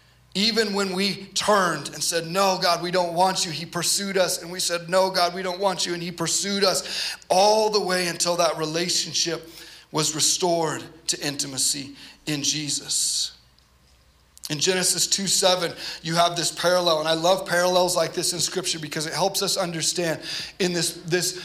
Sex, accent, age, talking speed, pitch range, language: male, American, 30-49, 180 wpm, 160-185 Hz, English